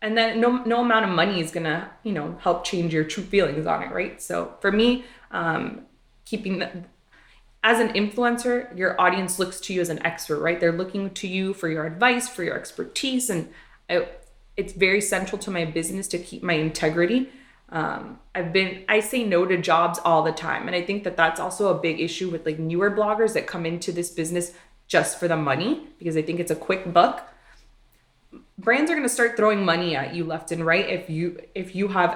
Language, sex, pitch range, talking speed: English, female, 170-215 Hz, 215 wpm